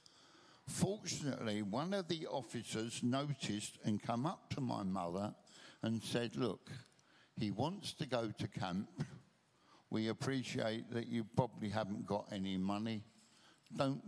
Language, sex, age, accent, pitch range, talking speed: English, male, 60-79, British, 110-145 Hz, 130 wpm